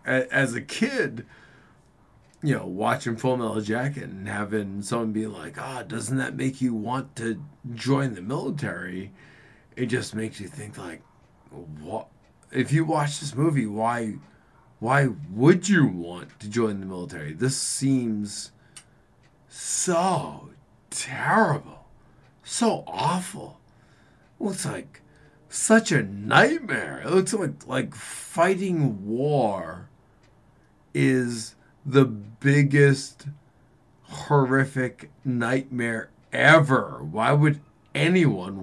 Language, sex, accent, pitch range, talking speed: English, male, American, 115-145 Hz, 110 wpm